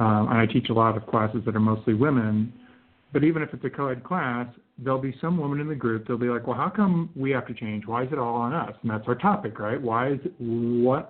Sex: male